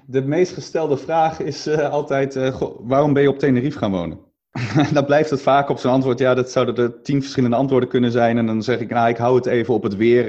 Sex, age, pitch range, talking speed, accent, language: male, 30-49, 105-130 Hz, 245 wpm, Dutch, Dutch